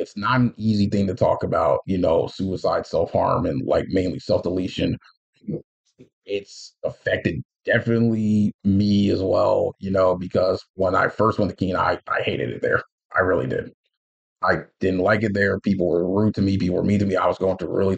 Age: 30-49